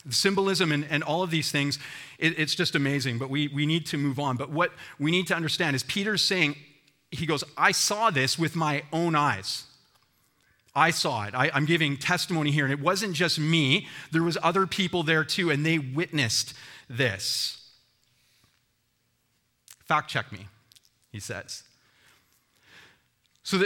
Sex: male